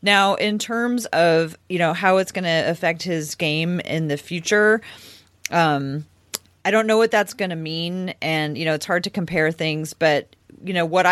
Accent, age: American, 30-49